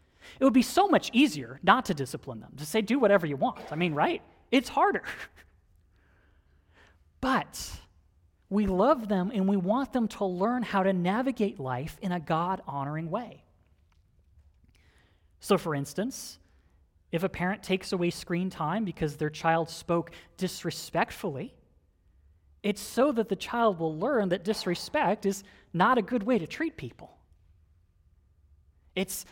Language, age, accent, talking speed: English, 30-49, American, 145 wpm